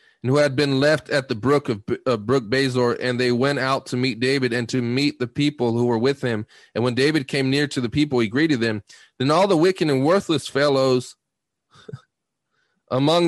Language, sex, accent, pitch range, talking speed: English, male, American, 125-160 Hz, 210 wpm